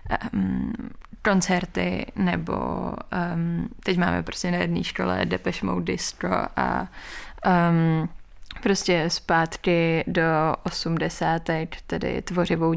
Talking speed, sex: 100 wpm, female